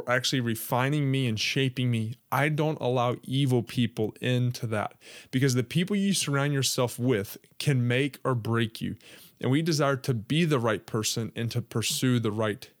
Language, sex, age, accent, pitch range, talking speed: English, male, 20-39, American, 110-135 Hz, 180 wpm